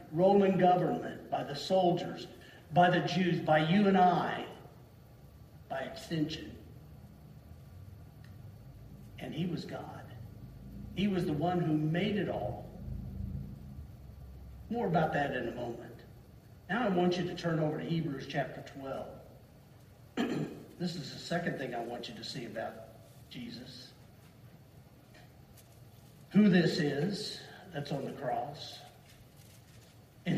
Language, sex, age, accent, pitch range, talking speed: English, male, 50-69, American, 130-185 Hz, 125 wpm